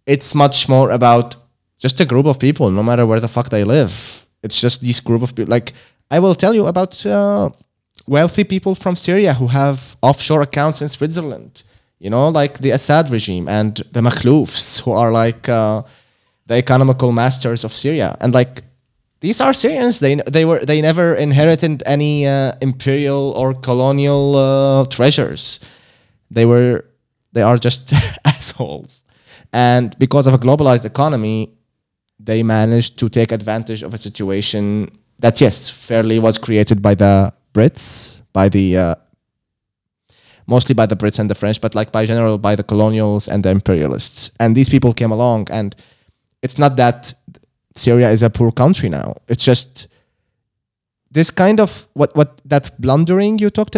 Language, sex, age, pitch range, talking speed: English, male, 20-39, 110-140 Hz, 165 wpm